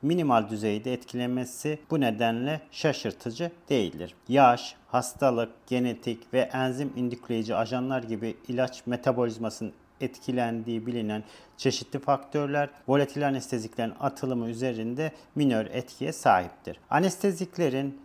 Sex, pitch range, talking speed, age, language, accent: male, 115-140 Hz, 95 wpm, 40-59, Turkish, native